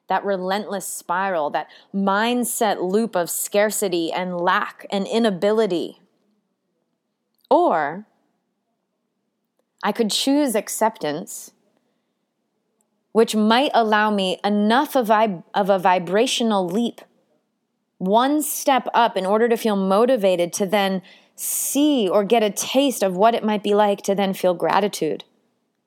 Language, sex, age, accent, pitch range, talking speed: English, female, 20-39, American, 195-245 Hz, 120 wpm